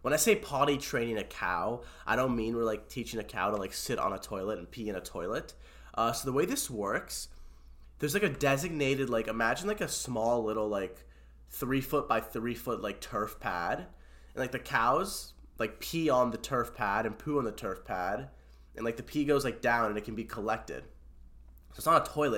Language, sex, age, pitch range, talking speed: English, male, 20-39, 90-125 Hz, 225 wpm